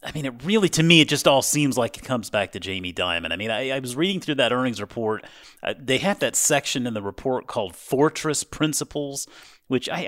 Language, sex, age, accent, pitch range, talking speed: English, male, 30-49, American, 110-145 Hz, 240 wpm